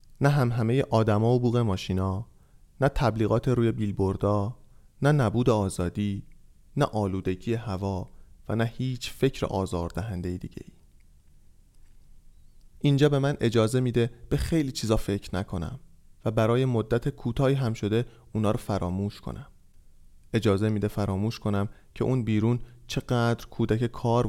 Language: Persian